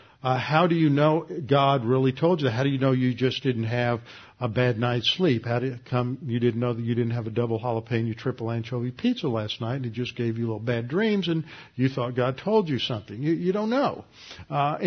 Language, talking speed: English, 245 wpm